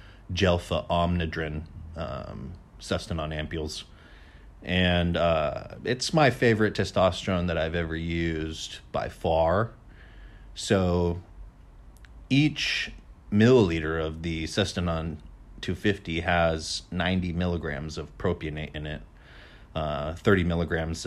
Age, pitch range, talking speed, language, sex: 30-49, 80-95 Hz, 95 wpm, English, male